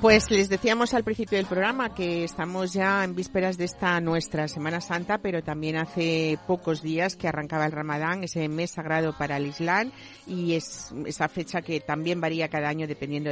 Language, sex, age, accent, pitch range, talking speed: Spanish, female, 50-69, Spanish, 155-185 Hz, 190 wpm